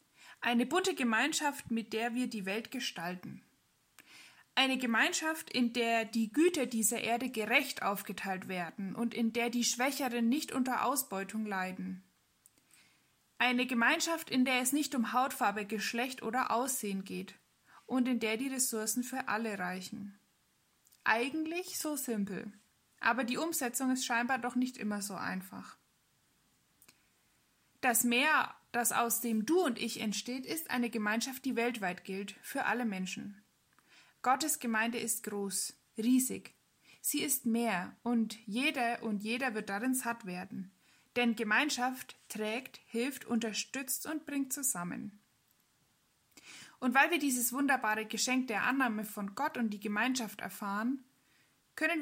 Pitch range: 215-260 Hz